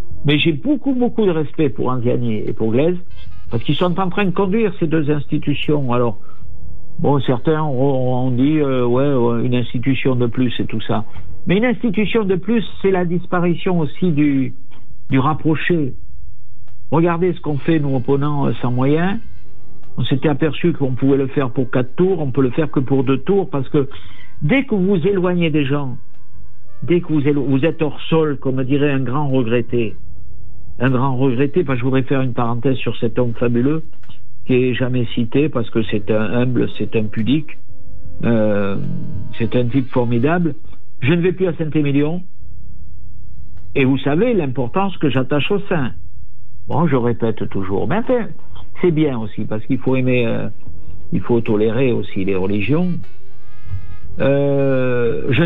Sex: male